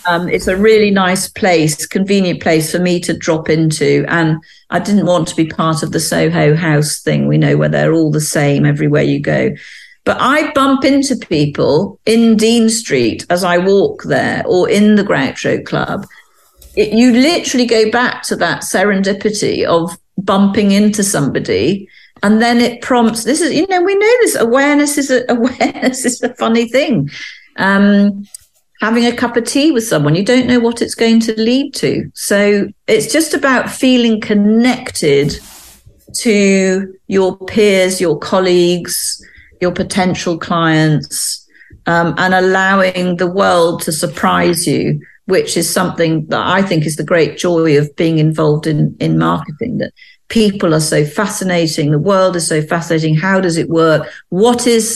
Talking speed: 170 wpm